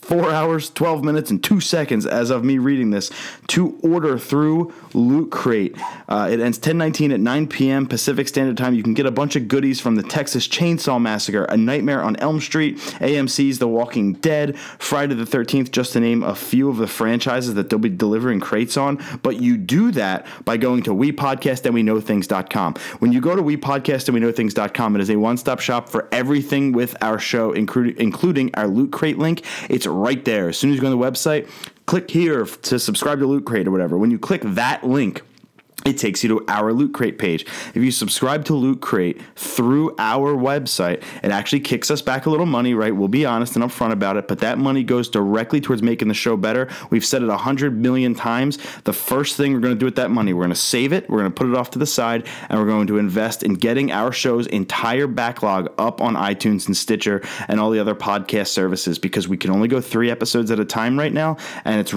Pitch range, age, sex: 115-145 Hz, 30-49, male